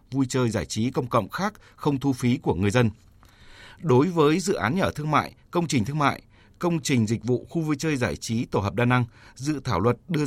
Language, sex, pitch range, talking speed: Vietnamese, male, 115-150 Hz, 240 wpm